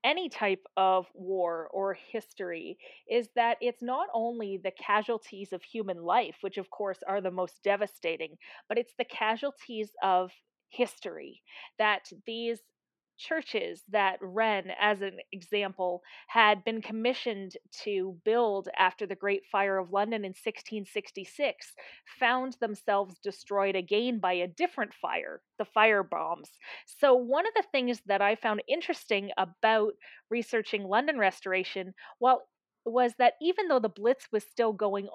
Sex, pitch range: female, 195-235 Hz